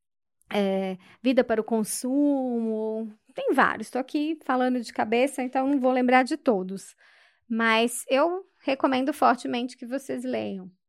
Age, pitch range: 20-39, 225-285 Hz